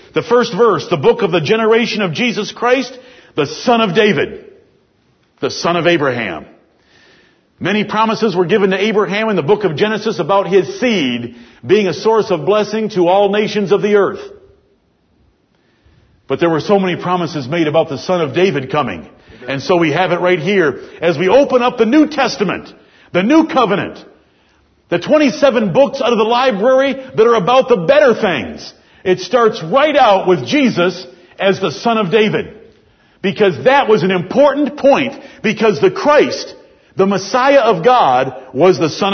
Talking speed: 175 wpm